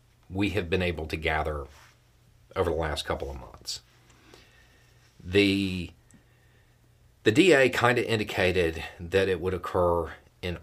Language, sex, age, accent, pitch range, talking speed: English, male, 40-59, American, 85-115 Hz, 130 wpm